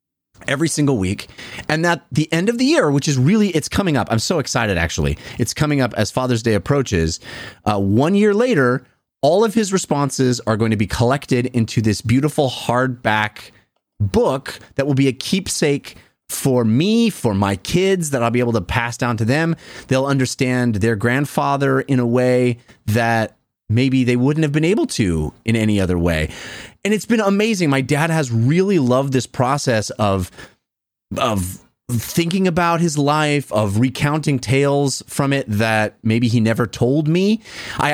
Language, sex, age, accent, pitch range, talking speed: English, male, 30-49, American, 115-155 Hz, 175 wpm